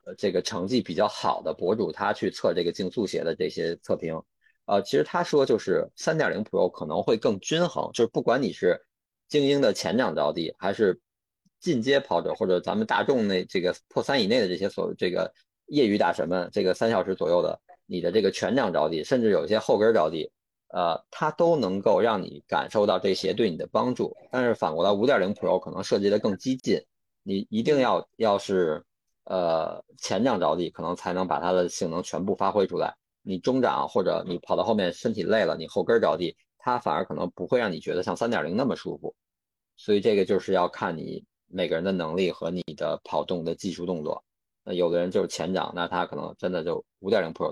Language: Chinese